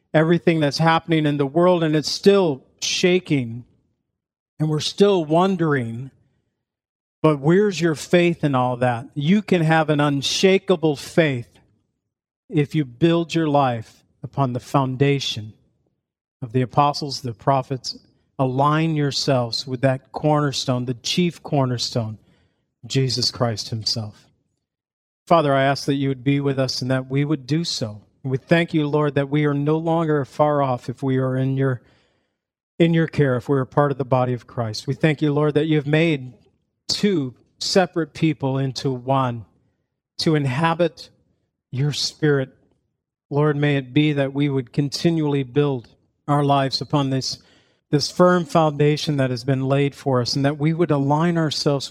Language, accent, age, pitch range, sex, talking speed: English, American, 50-69, 125-155 Hz, male, 160 wpm